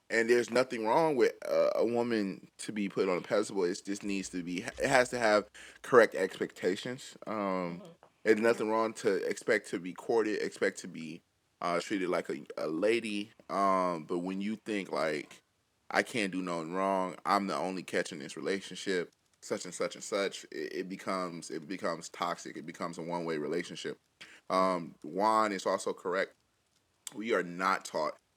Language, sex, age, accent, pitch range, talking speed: English, male, 20-39, American, 90-110 Hz, 180 wpm